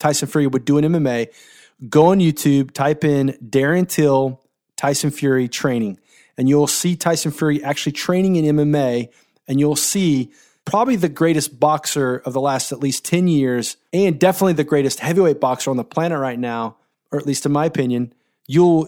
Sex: male